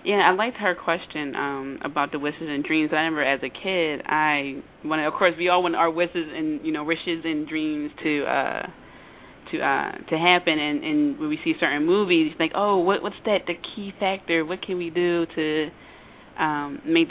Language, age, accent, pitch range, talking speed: English, 20-39, American, 155-185 Hz, 215 wpm